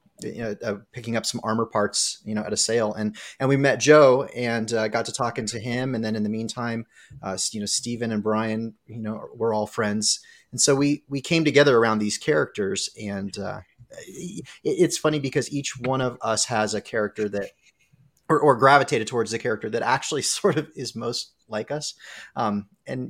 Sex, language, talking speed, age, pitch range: male, English, 210 wpm, 30-49, 105-140 Hz